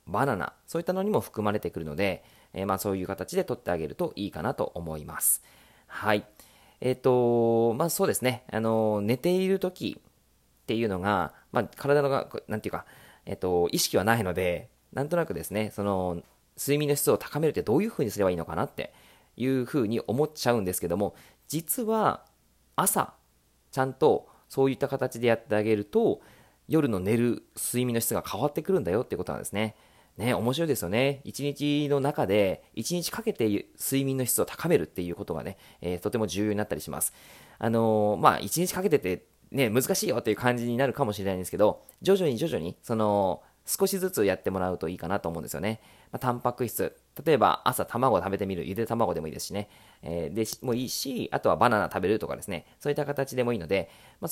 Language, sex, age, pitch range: Japanese, male, 20-39, 100-145 Hz